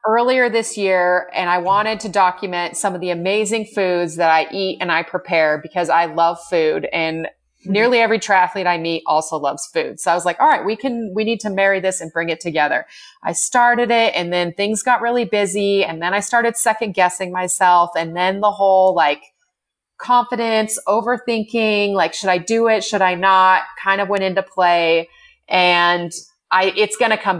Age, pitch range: 30-49, 175-225 Hz